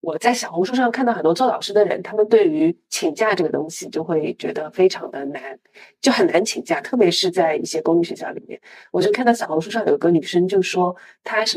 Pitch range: 180-245 Hz